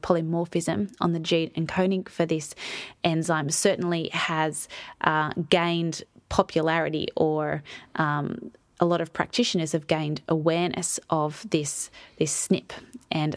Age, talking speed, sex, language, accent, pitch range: 20-39, 125 wpm, female, English, Australian, 170-200 Hz